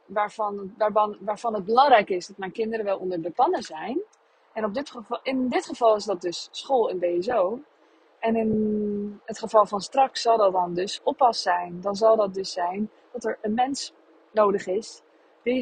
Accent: Dutch